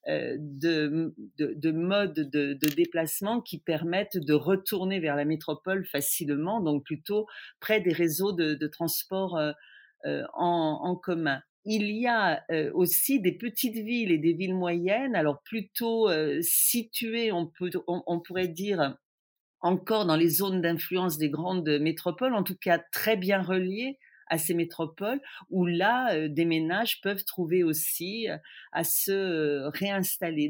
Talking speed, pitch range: 150 wpm, 160-210 Hz